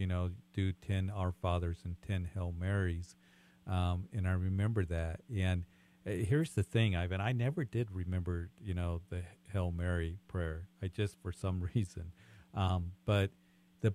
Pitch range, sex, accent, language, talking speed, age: 90-100 Hz, male, American, English, 170 wpm, 50-69